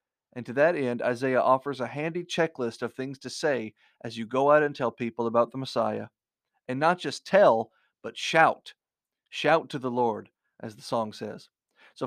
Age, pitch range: 40-59, 125-160 Hz